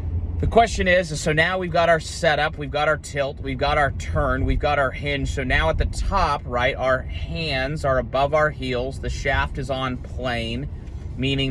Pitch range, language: 100-130 Hz, English